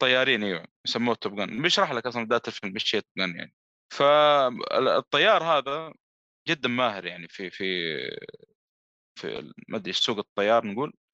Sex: male